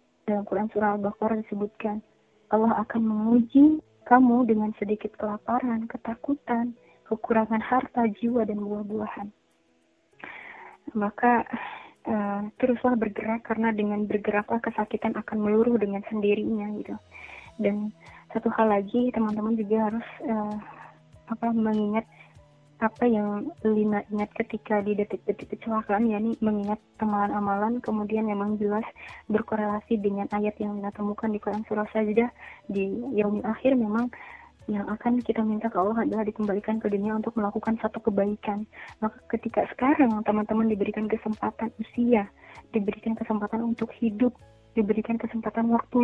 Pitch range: 210-230 Hz